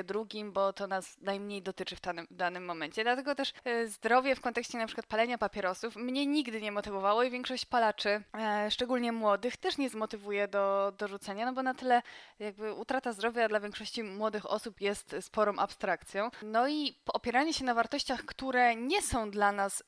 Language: Polish